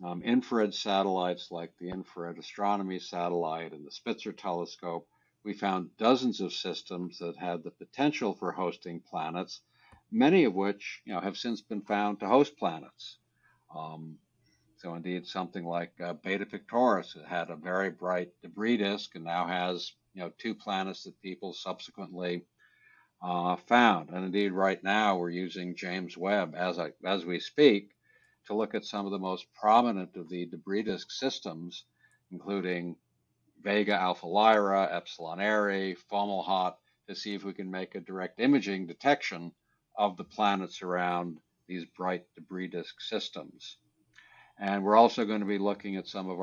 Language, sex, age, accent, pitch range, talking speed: English, male, 60-79, American, 90-100 Hz, 155 wpm